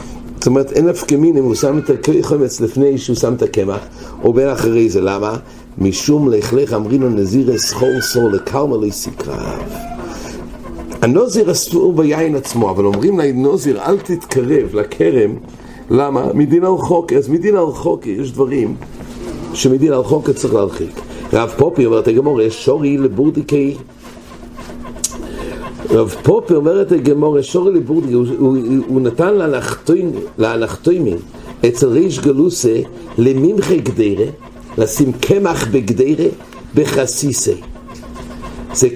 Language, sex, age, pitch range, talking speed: English, male, 60-79, 115-155 Hz, 105 wpm